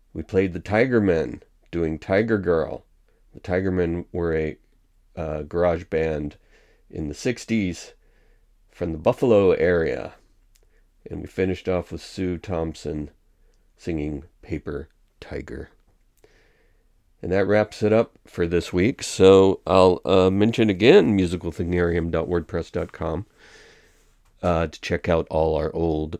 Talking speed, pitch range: 120 wpm, 85-100 Hz